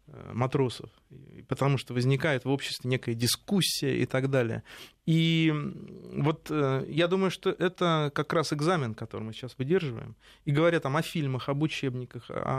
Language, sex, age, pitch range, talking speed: Russian, male, 30-49, 130-175 Hz, 145 wpm